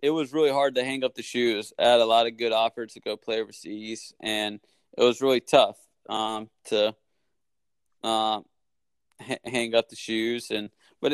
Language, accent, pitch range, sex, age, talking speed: English, American, 110-120 Hz, male, 20-39, 190 wpm